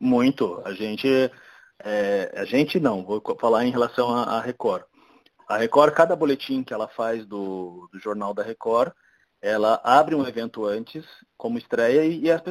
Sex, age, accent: male, 20-39, Brazilian